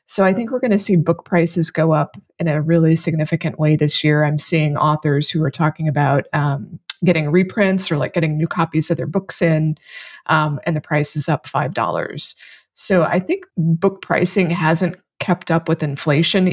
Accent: American